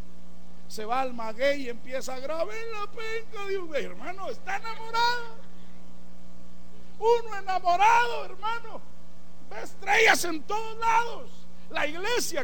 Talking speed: 115 wpm